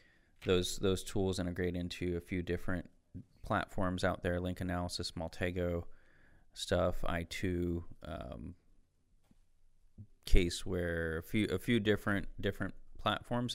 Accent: American